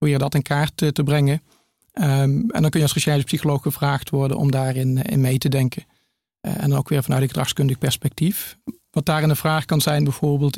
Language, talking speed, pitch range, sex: Dutch, 220 wpm, 140-155 Hz, male